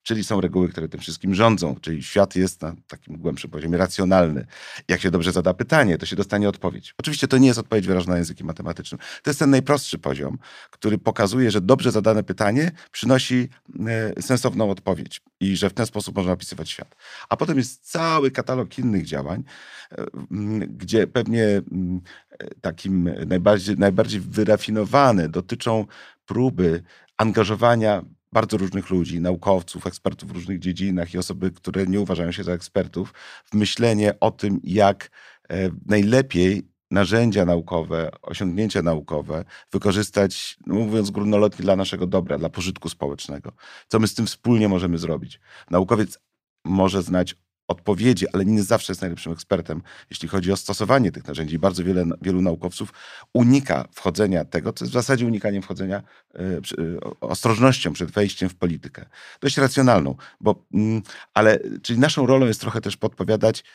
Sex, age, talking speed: male, 40-59, 150 wpm